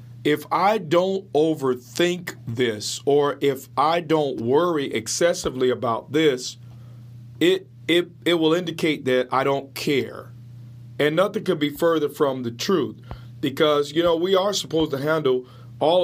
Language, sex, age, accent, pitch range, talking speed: English, male, 40-59, American, 120-155 Hz, 145 wpm